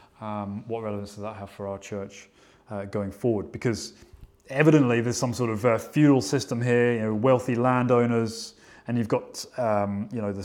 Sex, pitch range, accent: male, 105-125 Hz, British